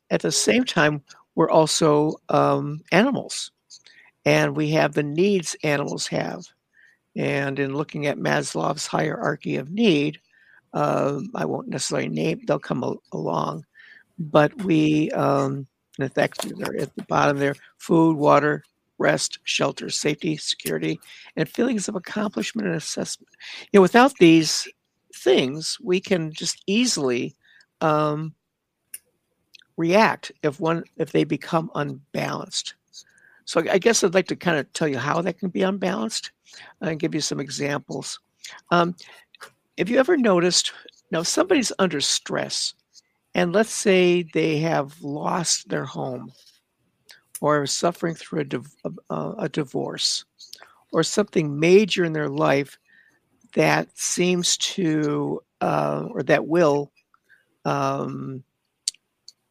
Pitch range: 145-190 Hz